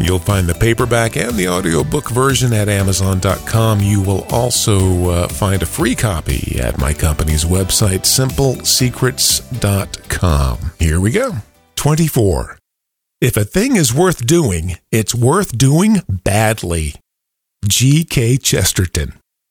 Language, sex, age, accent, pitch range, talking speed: English, male, 50-69, American, 100-135 Hz, 120 wpm